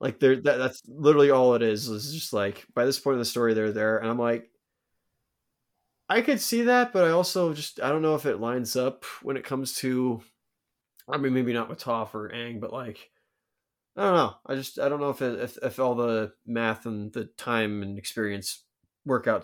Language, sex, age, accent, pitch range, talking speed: English, male, 20-39, American, 110-135 Hz, 220 wpm